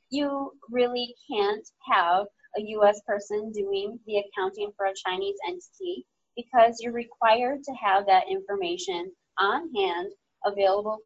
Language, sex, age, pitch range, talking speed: English, female, 20-39, 185-280 Hz, 130 wpm